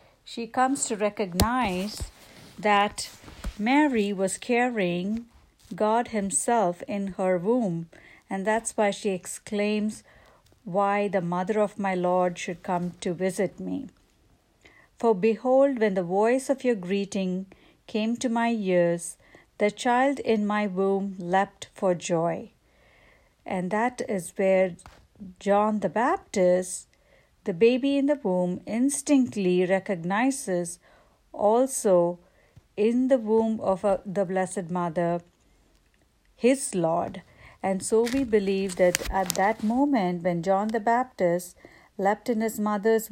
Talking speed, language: 125 wpm, English